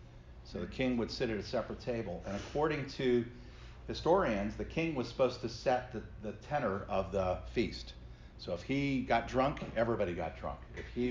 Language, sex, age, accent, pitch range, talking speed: English, male, 40-59, American, 95-120 Hz, 190 wpm